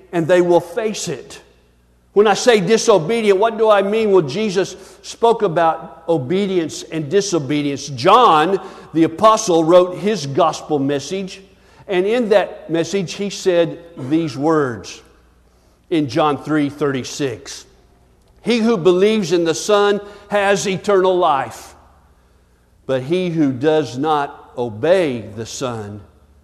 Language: English